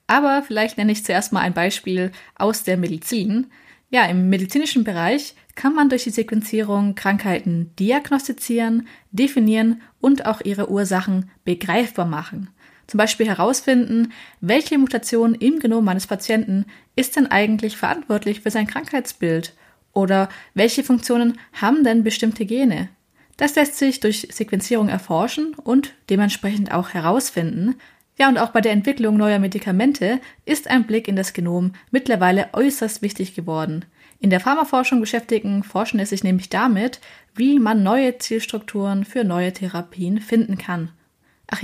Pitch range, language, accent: 195-250 Hz, German, German